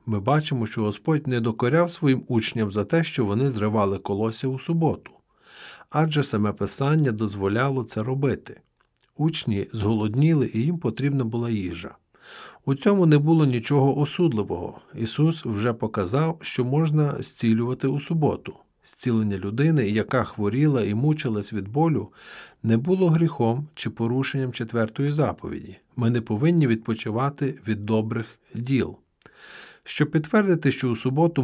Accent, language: native, Ukrainian